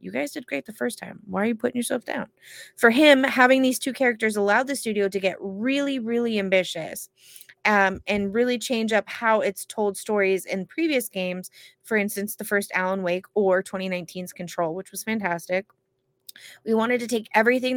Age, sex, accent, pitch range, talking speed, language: 20-39, female, American, 195-255 Hz, 190 wpm, English